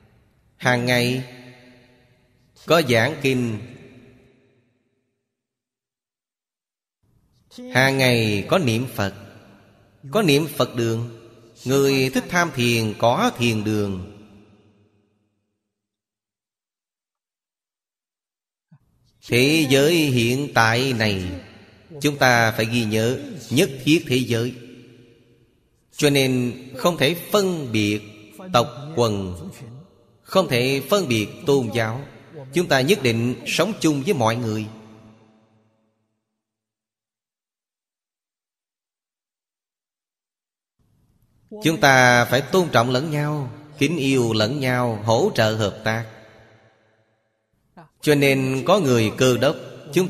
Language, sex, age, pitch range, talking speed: Vietnamese, male, 30-49, 110-135 Hz, 95 wpm